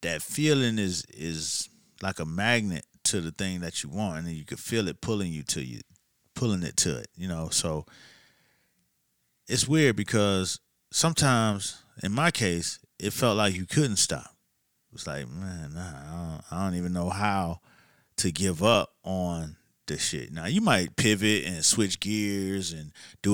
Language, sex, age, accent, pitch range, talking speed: English, male, 30-49, American, 90-120 Hz, 175 wpm